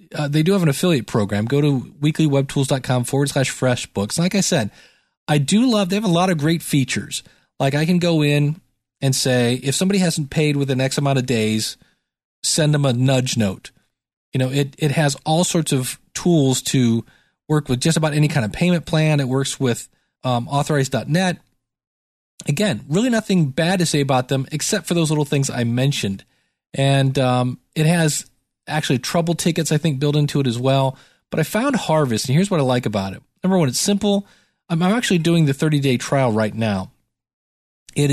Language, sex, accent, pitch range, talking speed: English, male, American, 130-160 Hz, 195 wpm